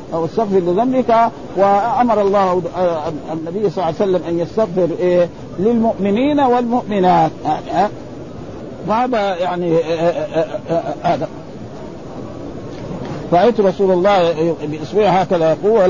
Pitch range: 170-205 Hz